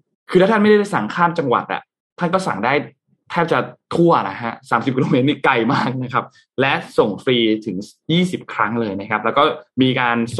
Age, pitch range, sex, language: 20-39, 115-145 Hz, male, Thai